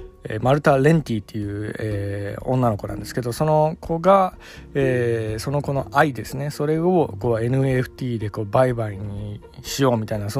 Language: Japanese